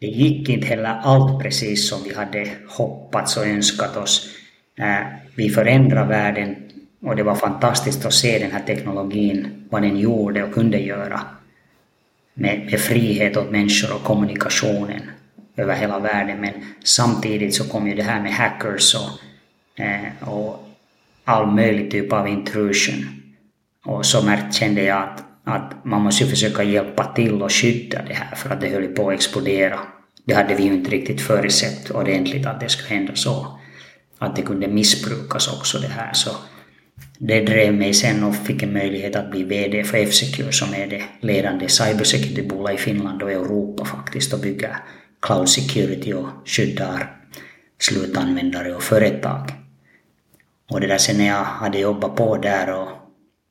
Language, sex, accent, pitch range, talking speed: Swedish, male, Finnish, 90-105 Hz, 160 wpm